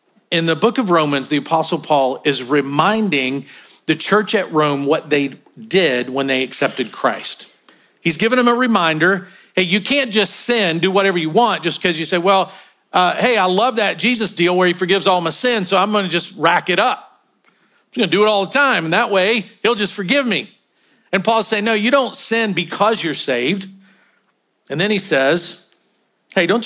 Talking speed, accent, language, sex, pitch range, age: 205 wpm, American, English, male, 160-215 Hz, 50-69